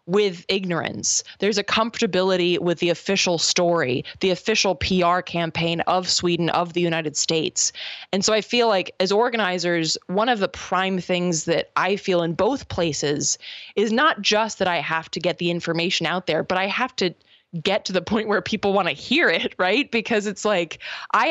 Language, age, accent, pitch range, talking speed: English, 20-39, American, 175-215 Hz, 190 wpm